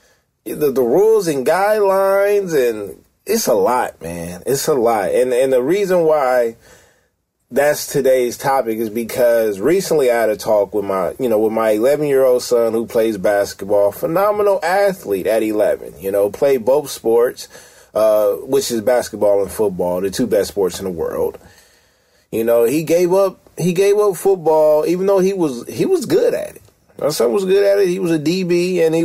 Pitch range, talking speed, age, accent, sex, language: 115-190 Hz, 190 wpm, 30-49, American, male, English